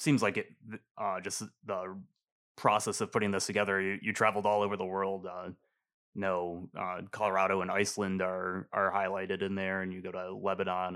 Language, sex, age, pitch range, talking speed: English, male, 20-39, 95-115 Hz, 180 wpm